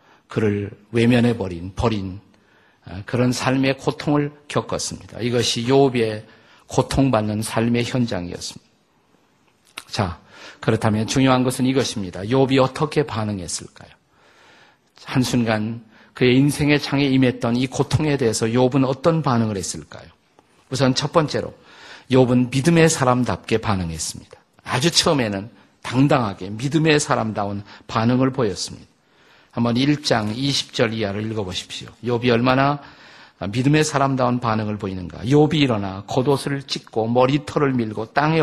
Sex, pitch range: male, 110-135 Hz